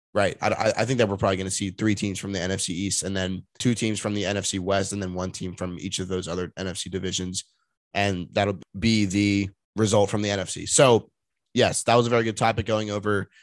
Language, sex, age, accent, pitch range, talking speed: English, male, 20-39, American, 100-125 Hz, 235 wpm